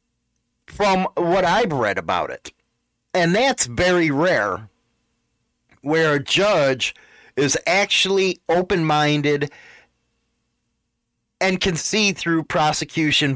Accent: American